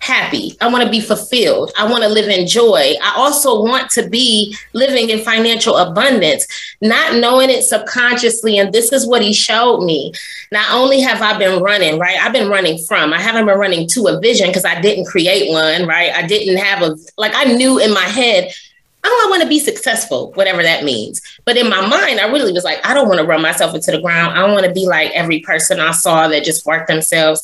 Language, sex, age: English, female, 20-39